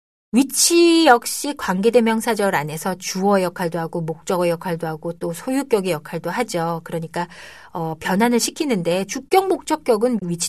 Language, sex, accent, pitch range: Korean, female, native, 170-240 Hz